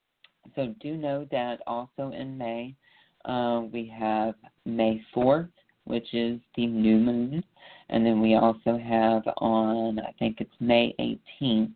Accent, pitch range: American, 110-125 Hz